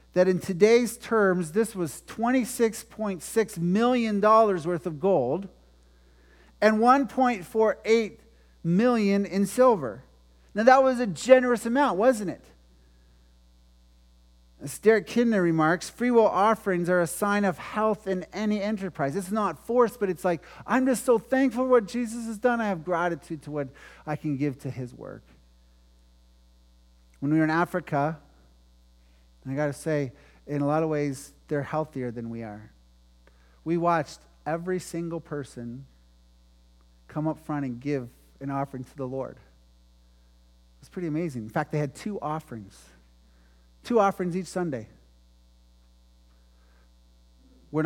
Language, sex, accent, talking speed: English, male, American, 145 wpm